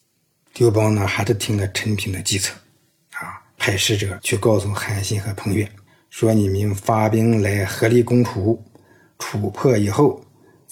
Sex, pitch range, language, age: male, 100-120 Hz, Chinese, 50-69